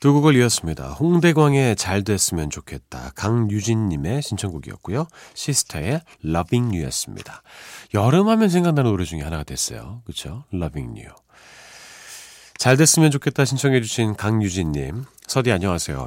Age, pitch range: 40-59, 90-135 Hz